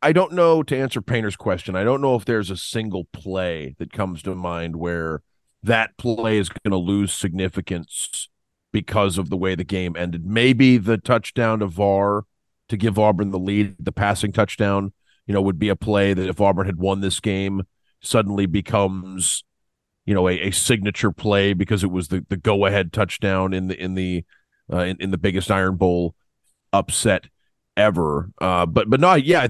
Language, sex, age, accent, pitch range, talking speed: English, male, 40-59, American, 95-115 Hz, 190 wpm